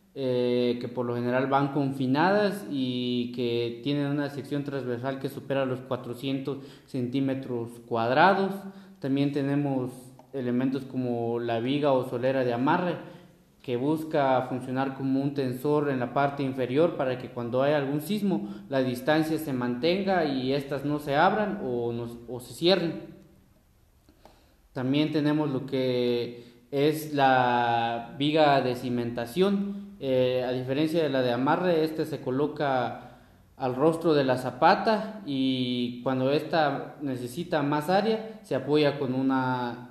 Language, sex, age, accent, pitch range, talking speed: Spanish, male, 30-49, Mexican, 125-155 Hz, 140 wpm